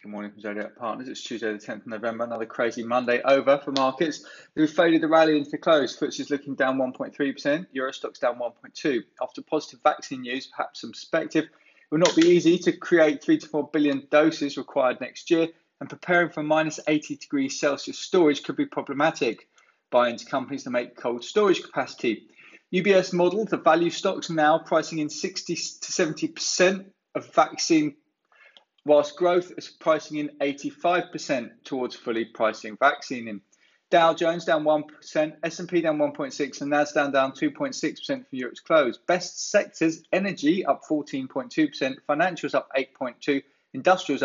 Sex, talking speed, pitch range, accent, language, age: male, 165 wpm, 140-185 Hz, British, English, 20-39